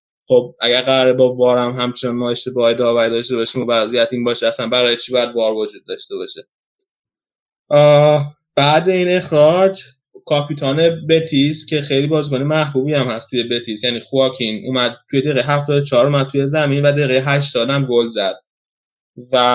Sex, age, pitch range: male, 20-39, 125-145 Hz